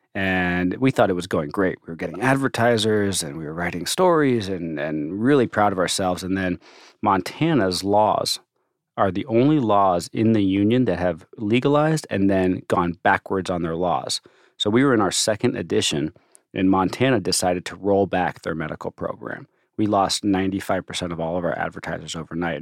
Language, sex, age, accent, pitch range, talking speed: English, male, 30-49, American, 90-105 Hz, 180 wpm